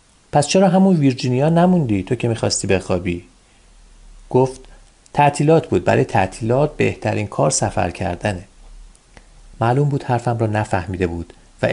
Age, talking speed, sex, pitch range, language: 40-59, 130 wpm, male, 95-120 Hz, Persian